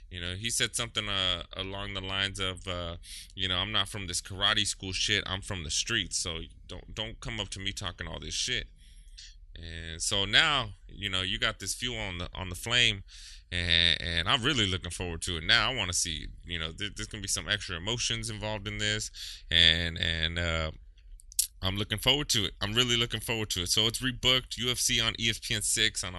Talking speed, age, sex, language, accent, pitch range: 220 wpm, 20-39, male, English, American, 80-105 Hz